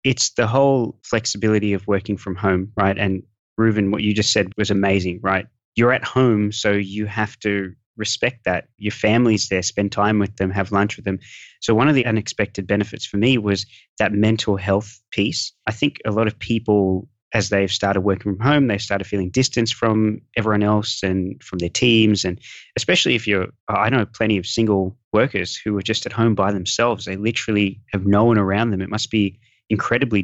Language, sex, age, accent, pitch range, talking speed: English, male, 20-39, Australian, 100-115 Hz, 205 wpm